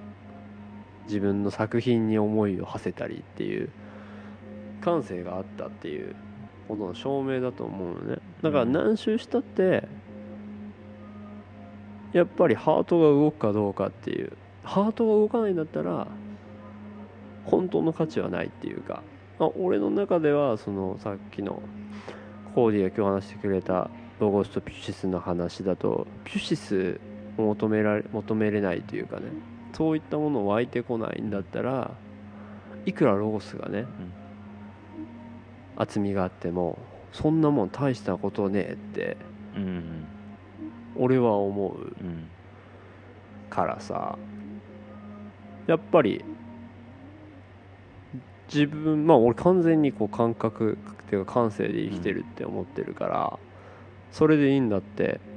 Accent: native